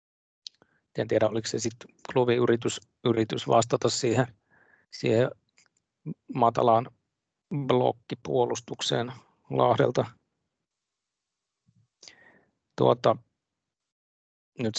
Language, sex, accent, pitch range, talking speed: Finnish, male, native, 105-125 Hz, 55 wpm